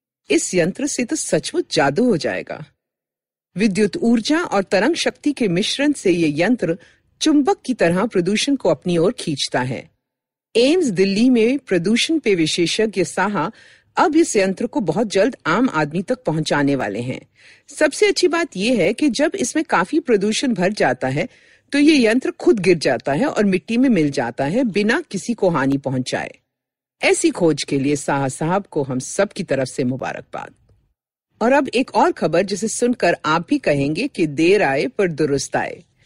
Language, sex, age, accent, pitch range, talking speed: Hindi, female, 50-69, native, 165-270 Hz, 175 wpm